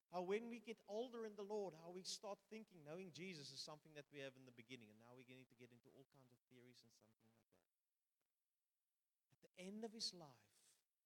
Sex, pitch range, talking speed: male, 130-205 Hz, 235 wpm